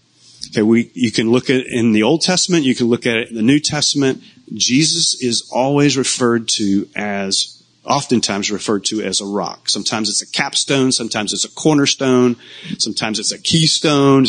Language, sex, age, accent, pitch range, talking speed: English, male, 30-49, American, 110-135 Hz, 185 wpm